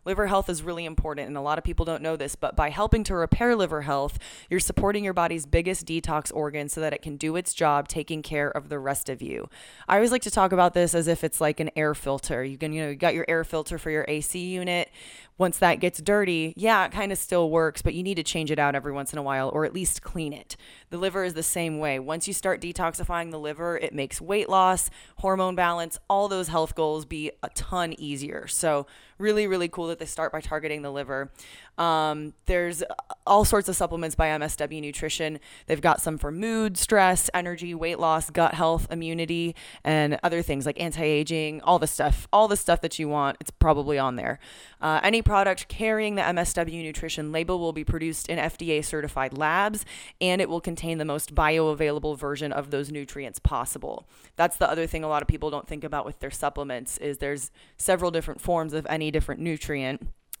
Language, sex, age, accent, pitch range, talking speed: English, female, 20-39, American, 150-175 Hz, 220 wpm